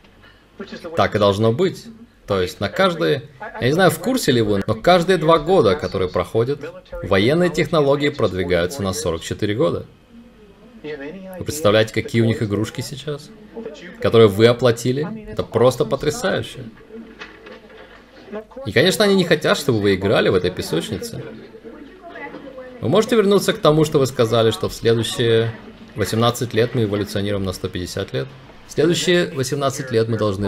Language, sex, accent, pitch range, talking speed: Russian, male, native, 105-155 Hz, 145 wpm